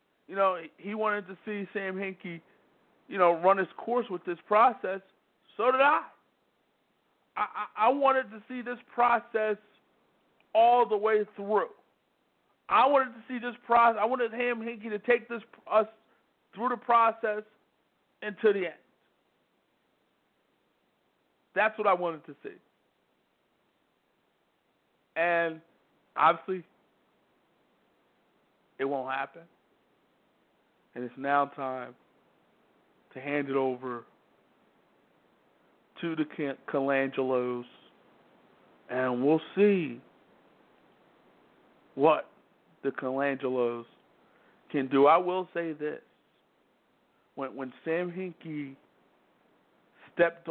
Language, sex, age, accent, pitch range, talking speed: English, male, 50-69, American, 145-215 Hz, 105 wpm